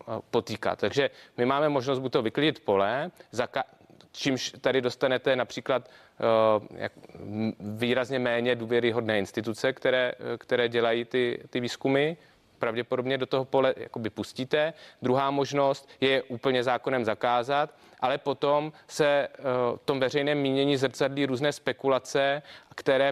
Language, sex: Czech, male